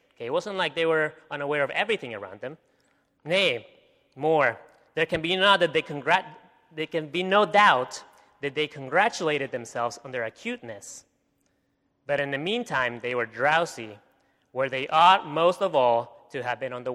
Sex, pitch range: male, 140-195 Hz